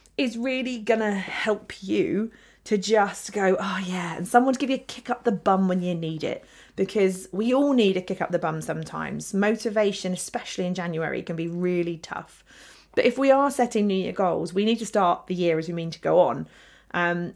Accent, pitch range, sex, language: British, 180-230 Hz, female, English